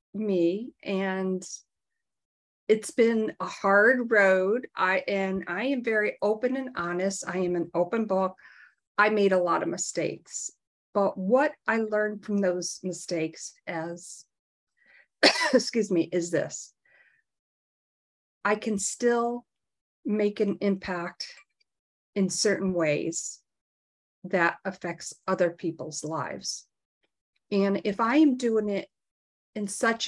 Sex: female